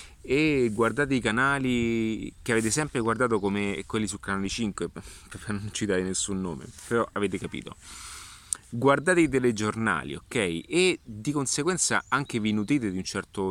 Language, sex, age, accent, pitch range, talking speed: Italian, male, 30-49, native, 95-140 Hz, 150 wpm